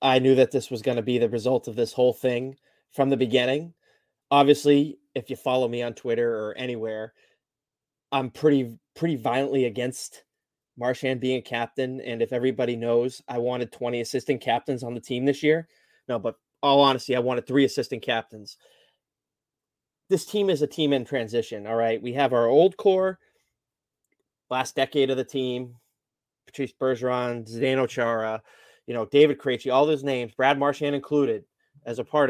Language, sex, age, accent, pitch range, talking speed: English, male, 20-39, American, 120-145 Hz, 175 wpm